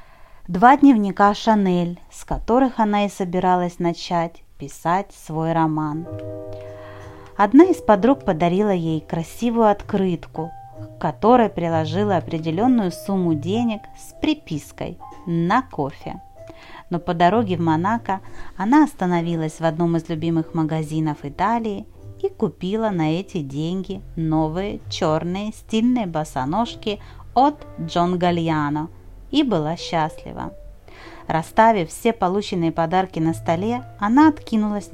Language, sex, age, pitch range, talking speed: Russian, female, 30-49, 155-205 Hz, 110 wpm